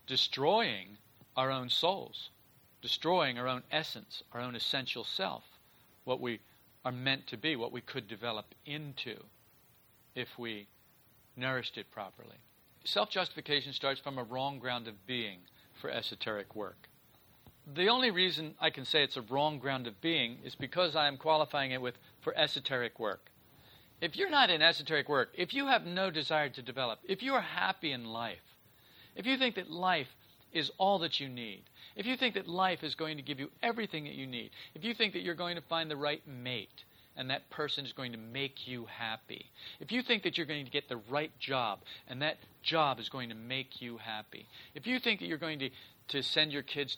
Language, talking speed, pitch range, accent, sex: English, 200 wpm, 120-155 Hz, American, male